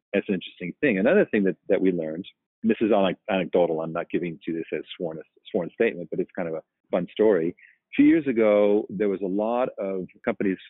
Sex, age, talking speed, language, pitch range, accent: male, 40-59, 230 wpm, English, 90-100 Hz, American